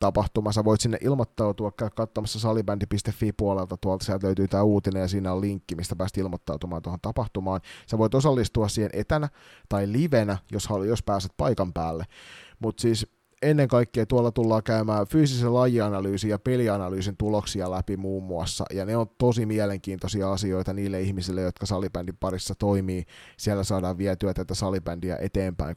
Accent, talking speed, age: native, 155 wpm, 30-49